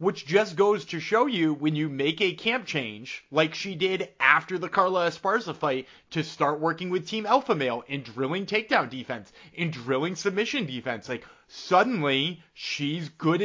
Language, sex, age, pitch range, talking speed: English, male, 30-49, 150-190 Hz, 175 wpm